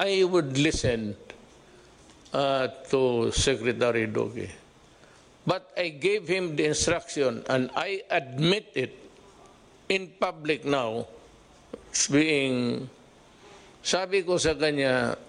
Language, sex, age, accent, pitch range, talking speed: English, male, 50-69, Filipino, 140-175 Hz, 80 wpm